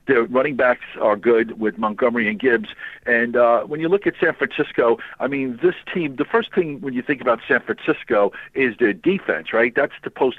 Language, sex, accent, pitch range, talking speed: English, male, American, 120-155 Hz, 210 wpm